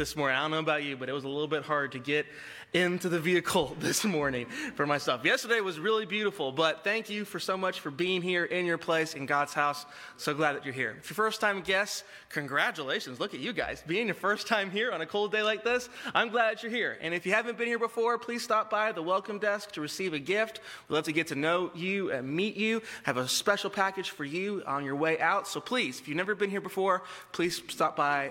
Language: English